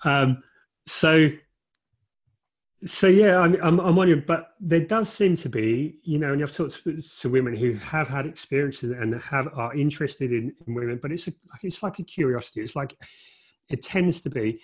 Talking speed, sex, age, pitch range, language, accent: 195 wpm, male, 30-49, 110-140 Hz, English, British